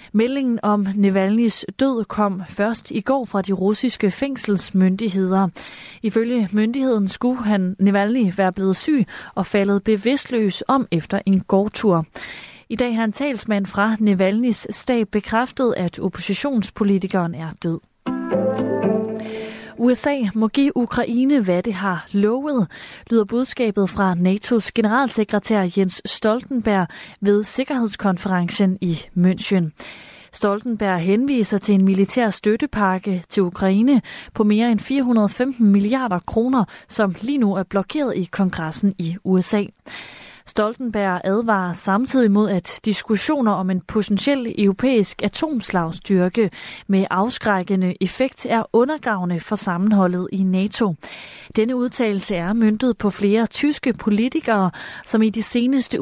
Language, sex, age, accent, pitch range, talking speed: Danish, female, 30-49, native, 190-235 Hz, 120 wpm